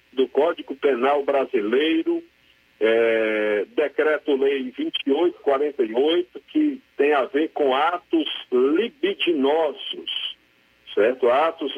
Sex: male